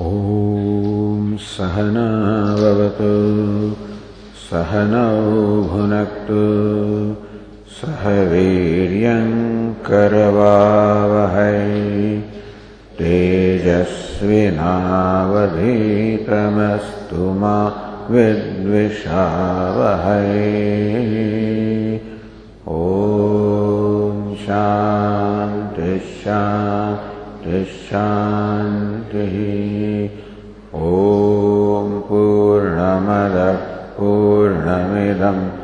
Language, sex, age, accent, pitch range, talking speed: English, male, 50-69, Indian, 95-105 Hz, 30 wpm